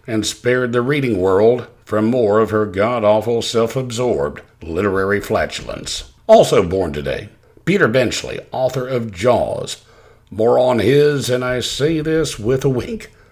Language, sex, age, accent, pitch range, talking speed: English, male, 60-79, American, 110-130 Hz, 140 wpm